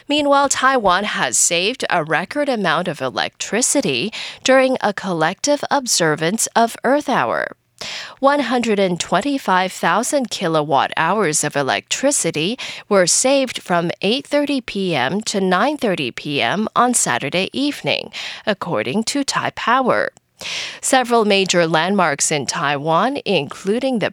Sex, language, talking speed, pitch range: female, English, 105 wpm, 175-255 Hz